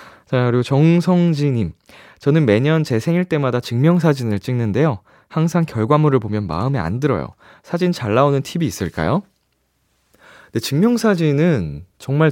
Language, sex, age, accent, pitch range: Korean, male, 20-39, native, 95-155 Hz